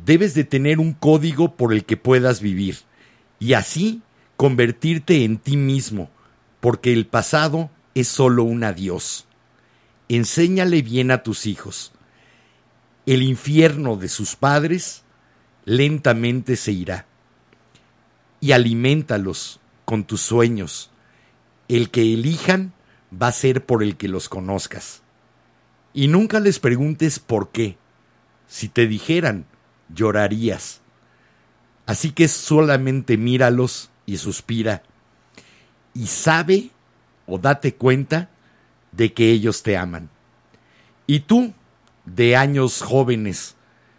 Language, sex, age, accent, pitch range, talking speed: Spanish, male, 50-69, Mexican, 110-150 Hz, 115 wpm